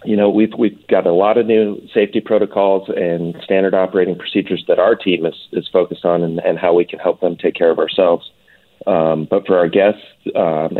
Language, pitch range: English, 85-105 Hz